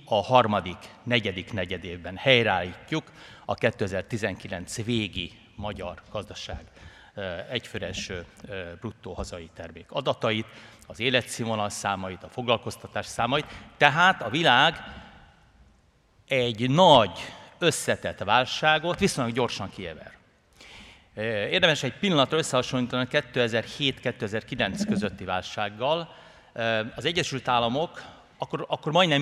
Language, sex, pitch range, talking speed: Hungarian, male, 105-135 Hz, 95 wpm